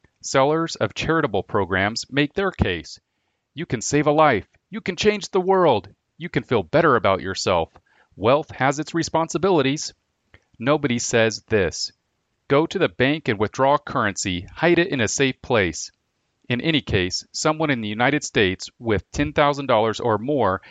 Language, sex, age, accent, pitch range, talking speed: English, male, 40-59, American, 105-145 Hz, 160 wpm